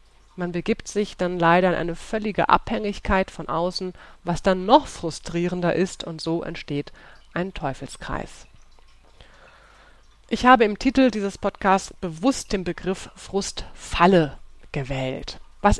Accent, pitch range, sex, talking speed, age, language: German, 165-205 Hz, female, 125 wpm, 30-49, German